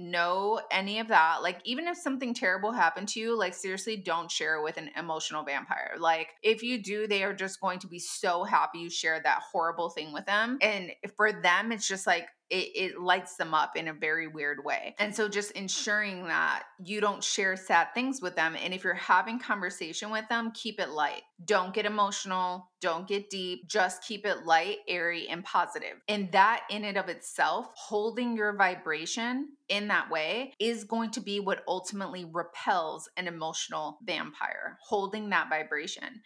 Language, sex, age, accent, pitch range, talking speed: English, female, 20-39, American, 170-215 Hz, 190 wpm